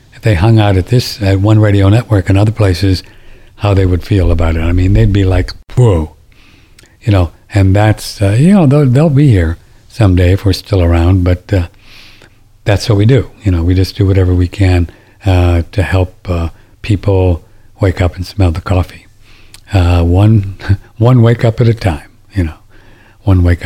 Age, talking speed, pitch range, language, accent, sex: 60-79, 195 wpm, 95-115 Hz, English, American, male